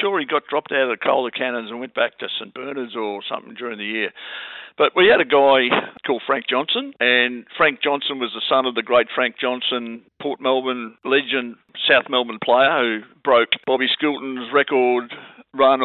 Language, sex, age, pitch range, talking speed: English, male, 50-69, 115-135 Hz, 195 wpm